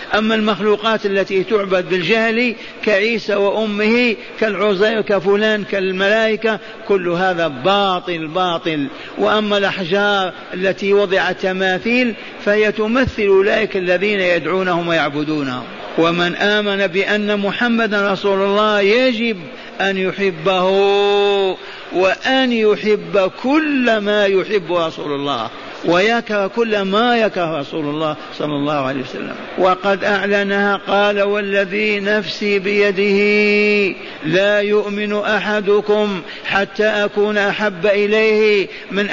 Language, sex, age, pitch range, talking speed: Arabic, male, 50-69, 190-210 Hz, 100 wpm